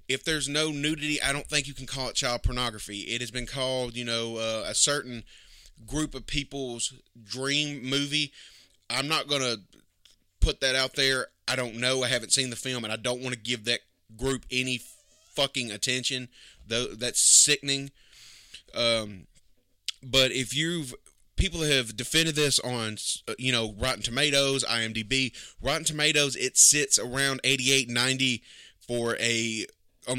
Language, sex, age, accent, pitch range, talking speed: English, male, 20-39, American, 115-135 Hz, 160 wpm